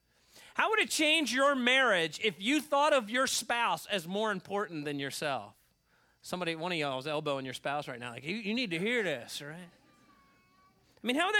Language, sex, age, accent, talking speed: English, male, 40-59, American, 205 wpm